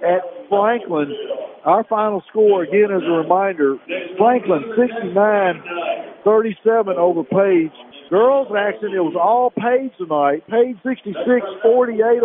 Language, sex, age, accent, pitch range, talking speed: English, male, 50-69, American, 155-215 Hz, 115 wpm